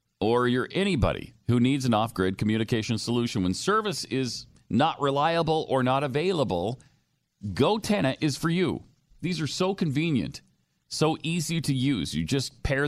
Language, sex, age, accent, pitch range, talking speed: English, male, 40-59, American, 110-150 Hz, 150 wpm